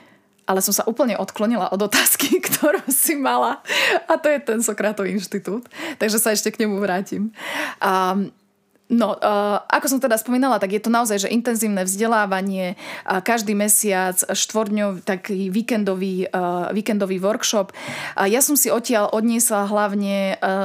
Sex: female